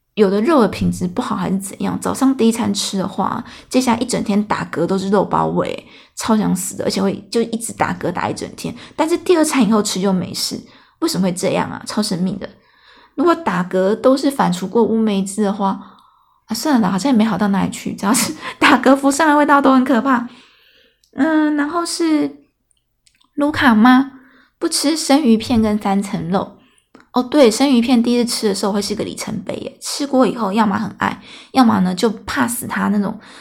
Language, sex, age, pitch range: Chinese, female, 20-39, 200-260 Hz